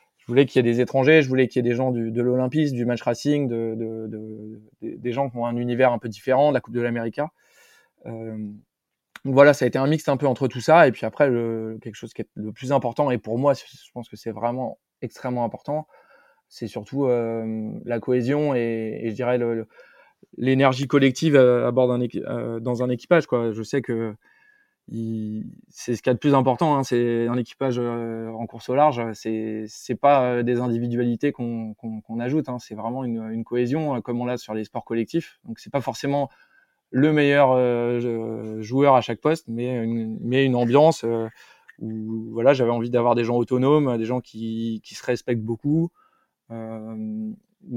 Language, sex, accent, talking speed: French, male, French, 210 wpm